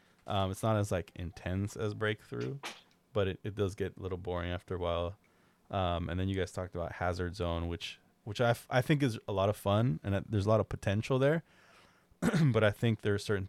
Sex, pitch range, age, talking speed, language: male, 90-105 Hz, 20-39, 235 wpm, English